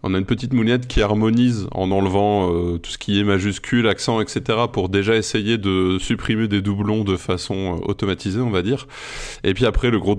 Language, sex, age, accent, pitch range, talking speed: French, male, 20-39, French, 100-125 Hz, 210 wpm